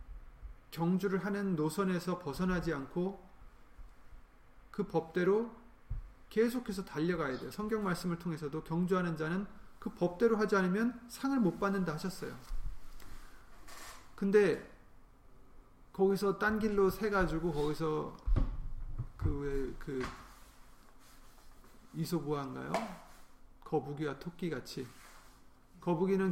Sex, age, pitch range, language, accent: male, 30-49, 135-185 Hz, Korean, native